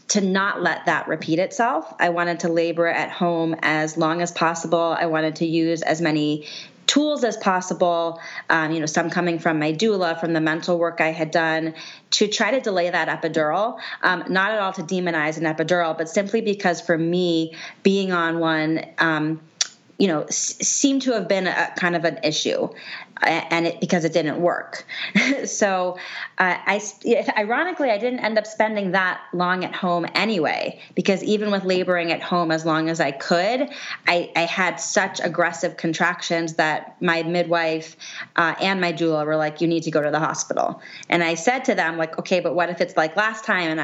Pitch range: 165-195 Hz